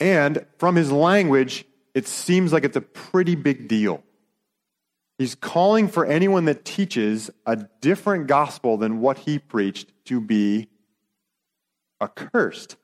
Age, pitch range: 30-49, 115-170 Hz